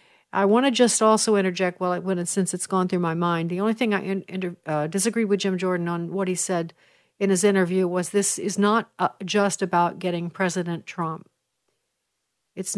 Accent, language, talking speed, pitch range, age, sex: American, English, 190 wpm, 180-205 Hz, 60-79, female